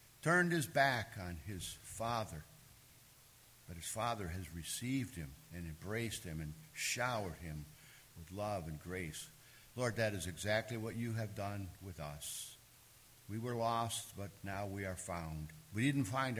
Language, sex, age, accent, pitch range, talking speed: English, male, 50-69, American, 90-120 Hz, 155 wpm